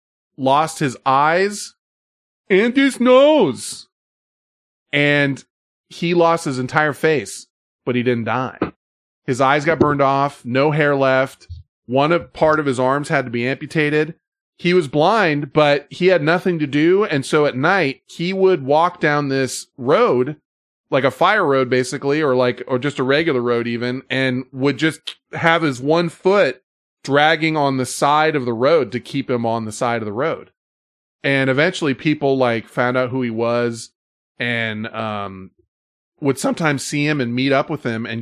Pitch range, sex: 120-155 Hz, male